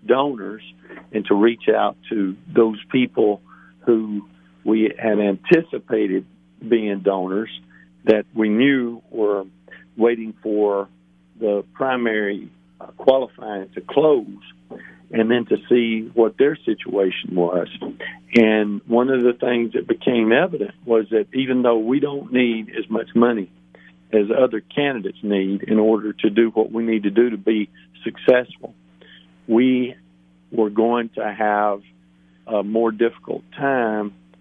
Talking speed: 135 wpm